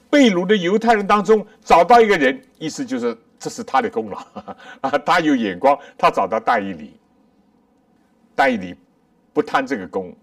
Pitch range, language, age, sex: 235-250 Hz, Chinese, 60-79, male